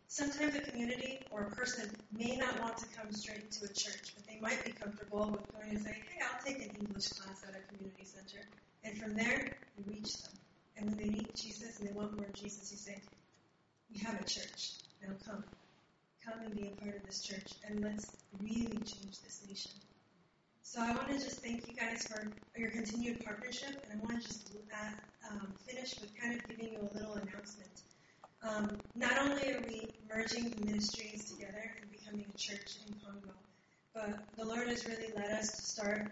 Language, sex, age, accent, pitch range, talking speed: English, female, 30-49, American, 200-230 Hz, 205 wpm